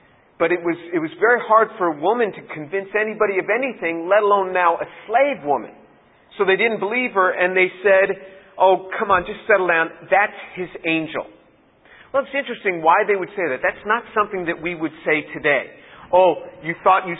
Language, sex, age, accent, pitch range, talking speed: English, male, 50-69, American, 165-205 Hz, 200 wpm